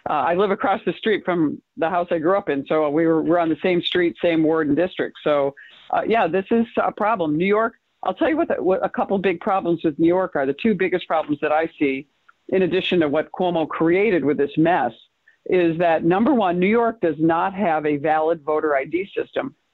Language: English